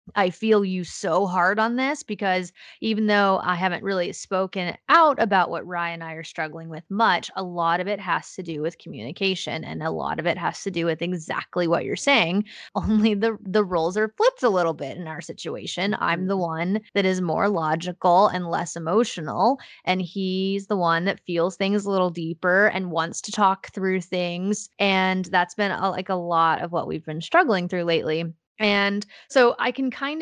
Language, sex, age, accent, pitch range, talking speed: English, female, 20-39, American, 175-210 Hz, 205 wpm